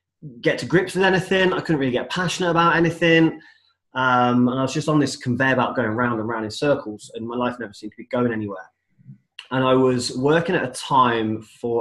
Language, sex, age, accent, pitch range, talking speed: English, male, 20-39, British, 110-135 Hz, 225 wpm